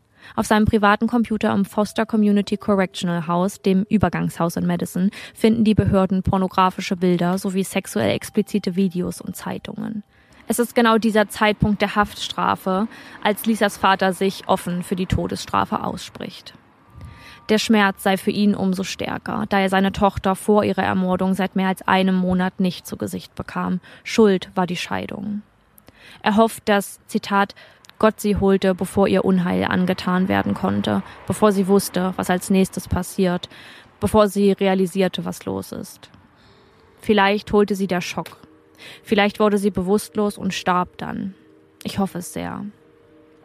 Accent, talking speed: German, 150 wpm